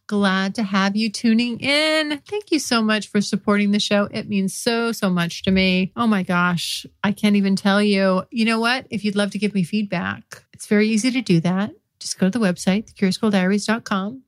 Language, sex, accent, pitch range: English, female, American, 200-240 Hz